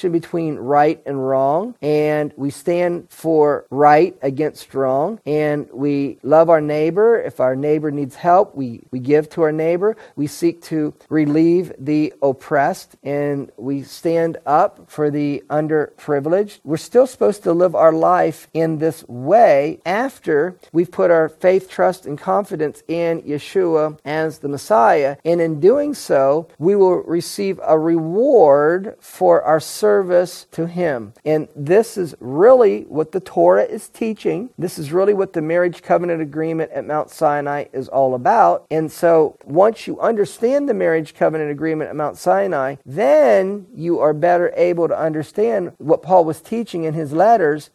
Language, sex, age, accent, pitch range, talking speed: English, male, 40-59, American, 145-180 Hz, 160 wpm